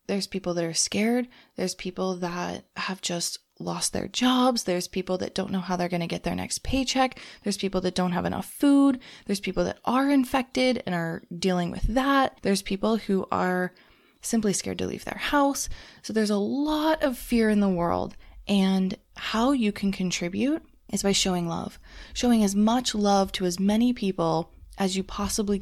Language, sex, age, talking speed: English, female, 20-39, 190 wpm